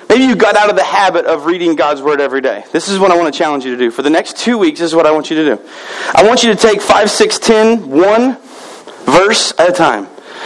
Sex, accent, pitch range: male, American, 175-235 Hz